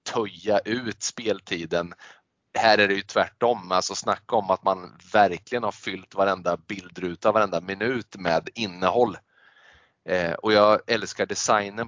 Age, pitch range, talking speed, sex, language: 20-39, 95-110 Hz, 130 wpm, male, Swedish